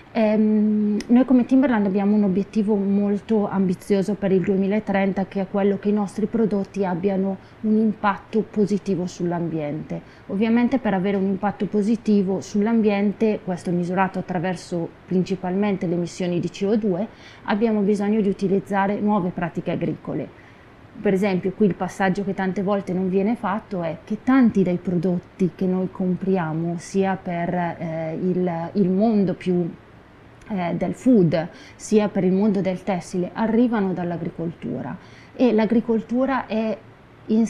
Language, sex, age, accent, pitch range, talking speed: Italian, female, 30-49, native, 185-215 Hz, 135 wpm